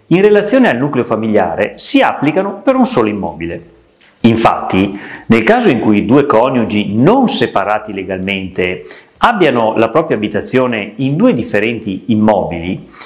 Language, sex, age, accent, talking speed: Italian, male, 40-59, native, 135 wpm